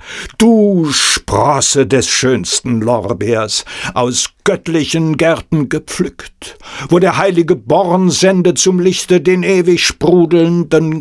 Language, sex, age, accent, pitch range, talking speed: German, male, 60-79, German, 105-170 Hz, 105 wpm